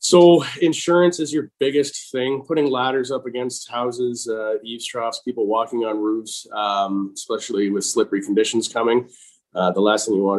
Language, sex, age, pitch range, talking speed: English, male, 20-39, 95-140 Hz, 170 wpm